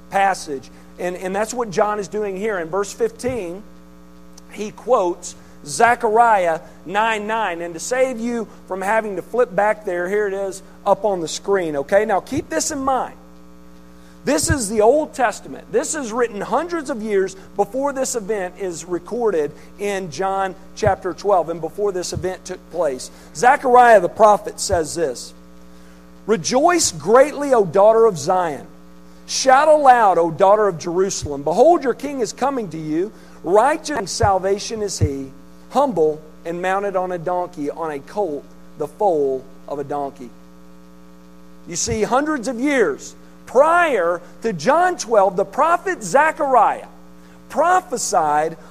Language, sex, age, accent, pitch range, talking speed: English, male, 50-69, American, 145-240 Hz, 150 wpm